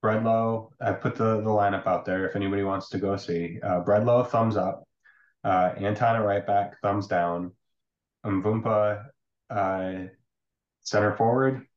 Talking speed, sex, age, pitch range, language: 145 wpm, male, 20-39, 95-115 Hz, English